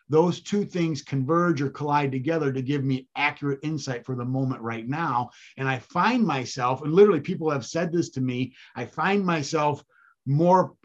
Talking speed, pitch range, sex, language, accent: 185 wpm, 135-165 Hz, male, English, American